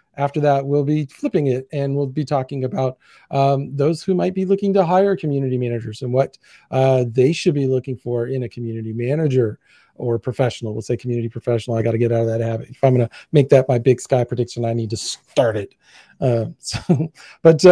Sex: male